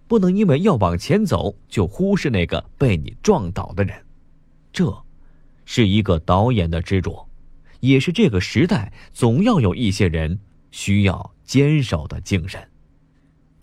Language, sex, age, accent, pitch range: Chinese, male, 30-49, native, 90-130 Hz